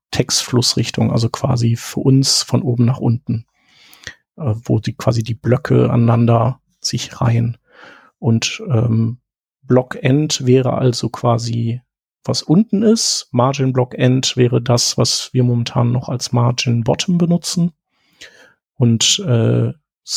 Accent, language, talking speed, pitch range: German, German, 120 wpm, 120-140 Hz